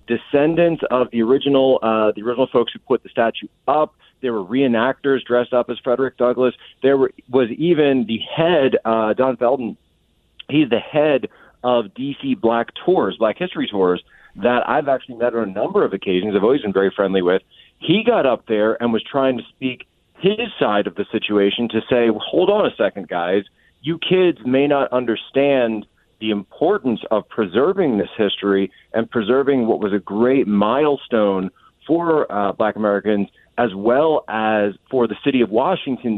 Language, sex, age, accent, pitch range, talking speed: English, male, 40-59, American, 110-135 Hz, 175 wpm